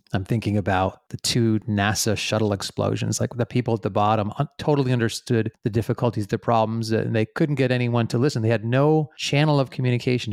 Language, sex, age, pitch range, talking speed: English, male, 30-49, 110-125 Hz, 190 wpm